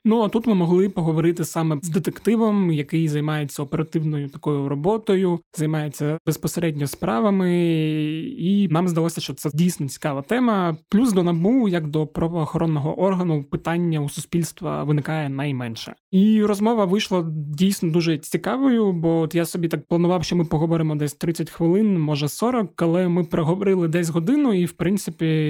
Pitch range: 150-180 Hz